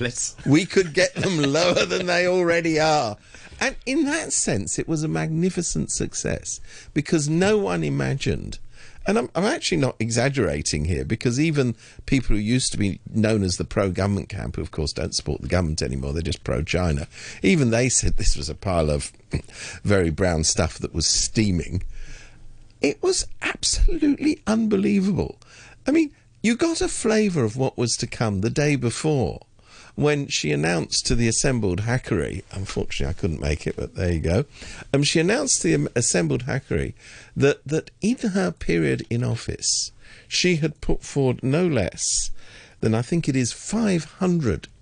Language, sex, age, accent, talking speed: English, male, 50-69, British, 170 wpm